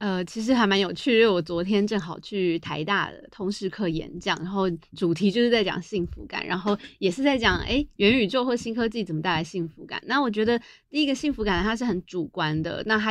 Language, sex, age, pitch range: Chinese, female, 20-39, 180-245 Hz